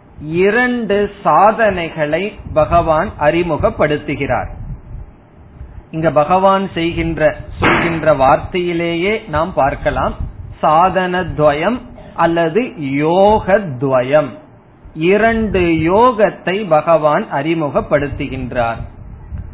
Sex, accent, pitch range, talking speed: male, native, 150-195 Hz, 50 wpm